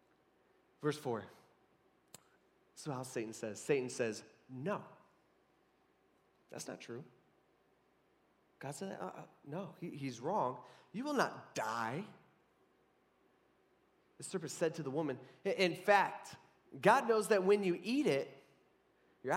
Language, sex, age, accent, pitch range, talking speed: English, male, 20-39, American, 125-180 Hz, 120 wpm